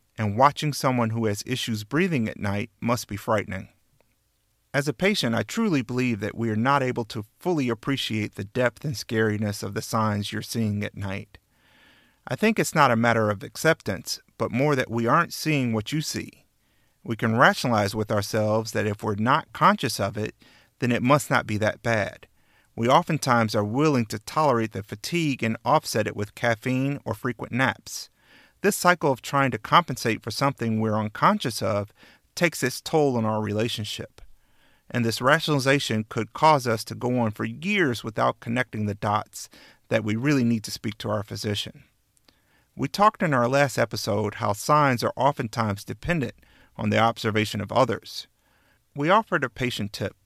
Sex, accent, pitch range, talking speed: male, American, 110-140 Hz, 180 wpm